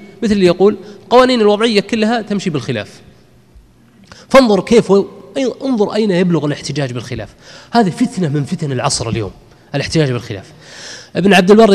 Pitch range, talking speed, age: 125-185 Hz, 135 wpm, 20-39